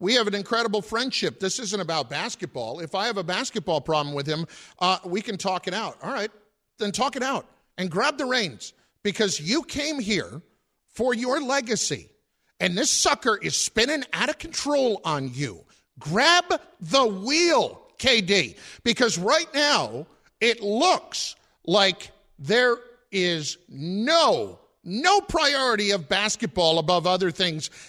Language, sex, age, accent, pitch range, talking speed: English, male, 50-69, American, 185-255 Hz, 150 wpm